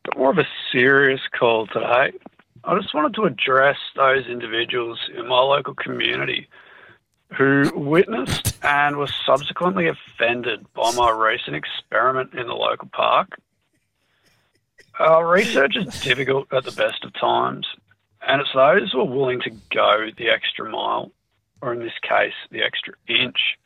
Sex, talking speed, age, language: male, 145 wpm, 50-69, English